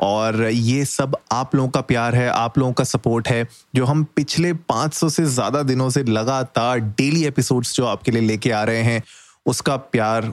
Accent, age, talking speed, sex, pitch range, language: native, 30-49, 190 wpm, male, 115-135 Hz, Hindi